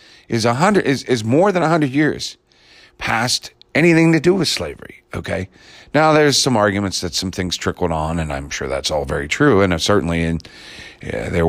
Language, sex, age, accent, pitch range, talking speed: English, male, 50-69, American, 85-115 Hz, 205 wpm